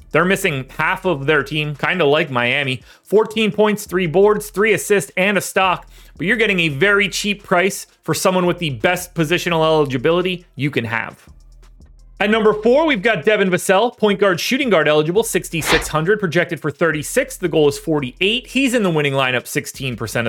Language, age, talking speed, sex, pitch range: English, 30-49, 185 wpm, male, 150-205 Hz